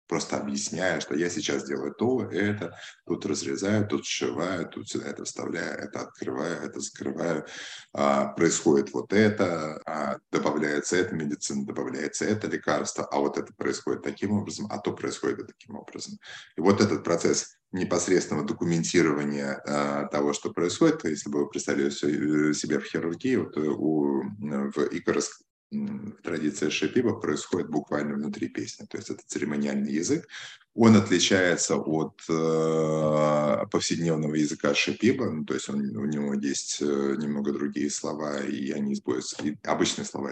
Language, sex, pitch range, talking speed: English, male, 70-90 Hz, 135 wpm